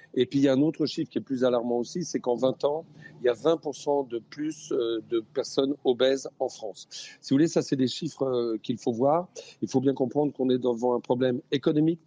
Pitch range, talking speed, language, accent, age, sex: 120-150 Hz, 240 wpm, French, French, 40-59, male